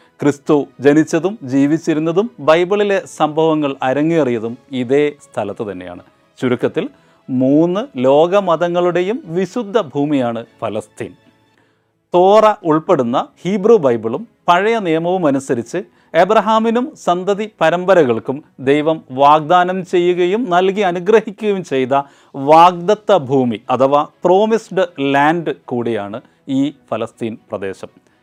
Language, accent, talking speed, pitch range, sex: Malayalam, native, 85 wpm, 140-195 Hz, male